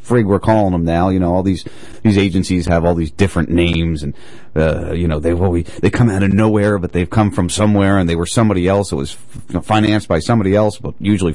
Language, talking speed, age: English, 225 wpm, 30-49